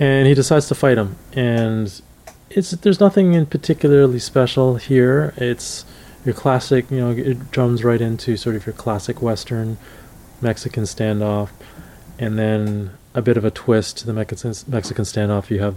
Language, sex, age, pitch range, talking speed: English, male, 20-39, 100-115 Hz, 165 wpm